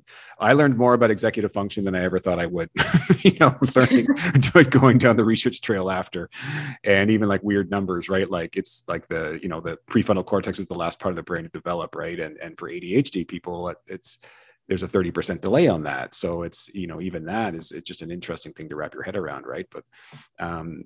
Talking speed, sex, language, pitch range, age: 225 wpm, male, English, 90-110 Hz, 30-49